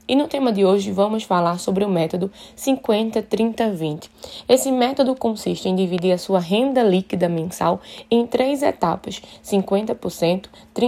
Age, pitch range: 20-39, 190-240 Hz